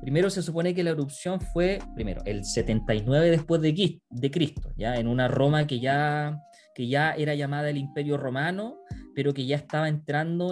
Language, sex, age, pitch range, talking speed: Spanish, male, 20-39, 135-170 Hz, 170 wpm